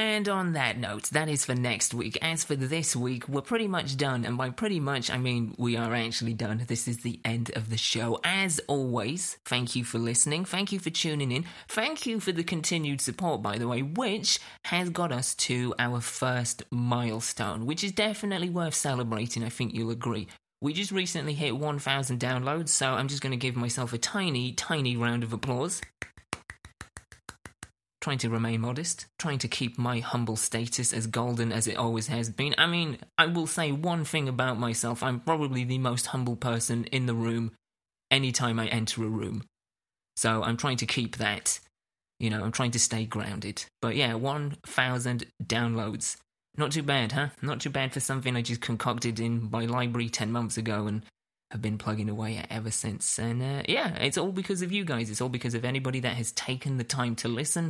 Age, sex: 30-49, male